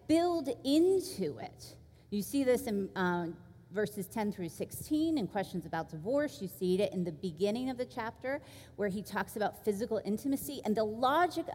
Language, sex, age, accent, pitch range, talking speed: English, female, 40-59, American, 185-260 Hz, 175 wpm